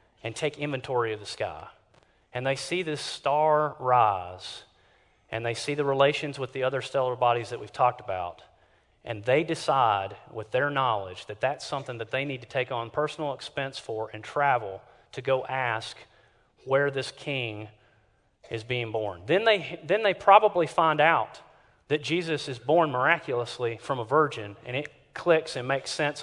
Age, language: 30-49, English